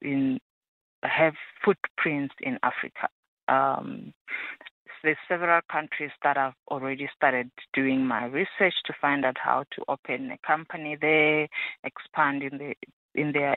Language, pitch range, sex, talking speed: English, 140-165 Hz, female, 135 wpm